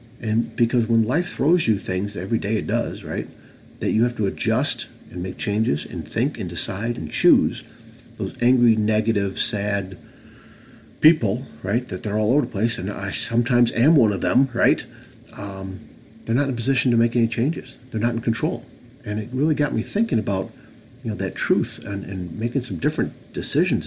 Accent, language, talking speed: American, English, 195 wpm